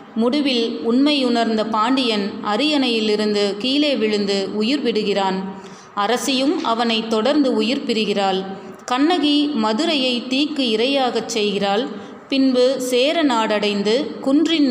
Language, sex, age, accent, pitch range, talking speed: Tamil, female, 30-49, native, 215-265 Hz, 85 wpm